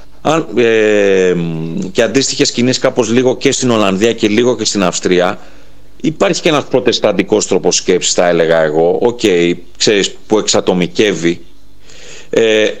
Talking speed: 130 wpm